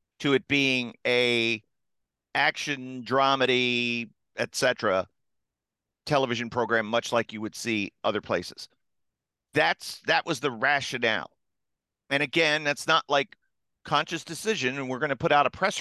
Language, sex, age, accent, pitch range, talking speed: English, male, 50-69, American, 115-145 Hz, 140 wpm